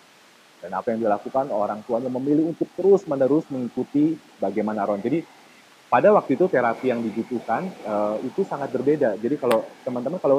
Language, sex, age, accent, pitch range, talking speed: Indonesian, male, 40-59, native, 110-135 Hz, 155 wpm